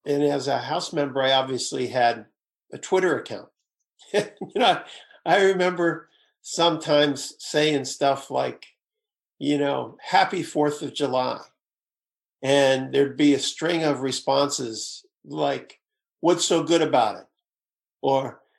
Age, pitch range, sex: 50-69, 140-175 Hz, male